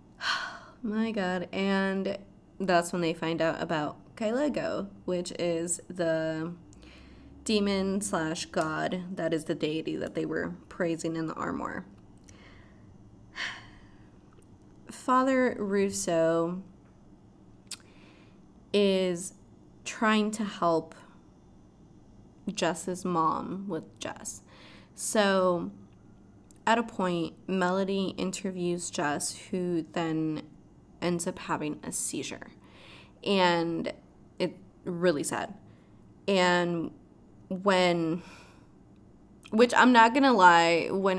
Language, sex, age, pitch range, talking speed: English, female, 20-39, 165-210 Hz, 90 wpm